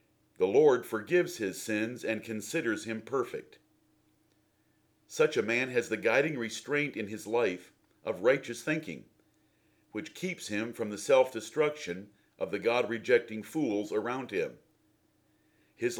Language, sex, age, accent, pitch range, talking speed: English, male, 50-69, American, 110-155 Hz, 130 wpm